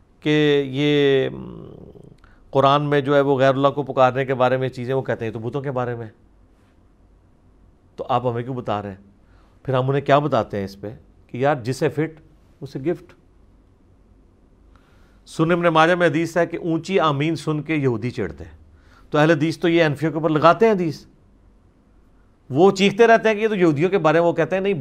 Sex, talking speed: male, 200 wpm